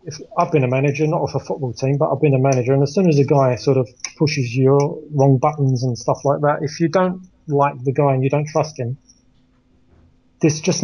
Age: 30-49